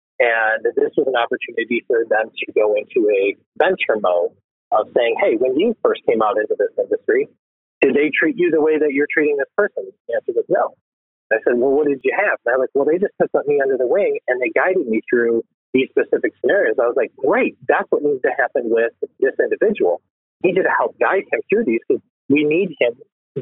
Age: 40-59